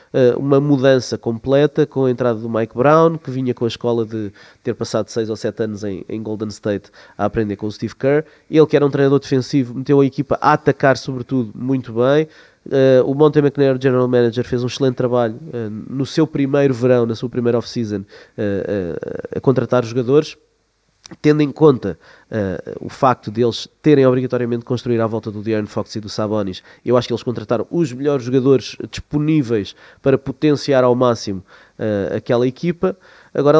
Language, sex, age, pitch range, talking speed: Portuguese, male, 20-39, 115-140 Hz, 190 wpm